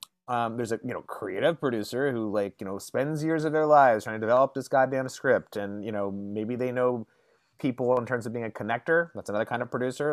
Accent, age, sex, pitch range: American, 30-49, male, 105-145 Hz